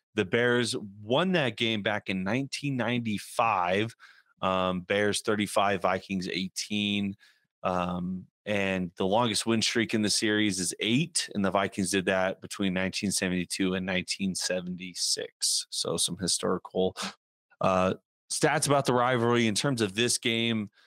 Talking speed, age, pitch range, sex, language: 130 wpm, 30-49, 95-115 Hz, male, English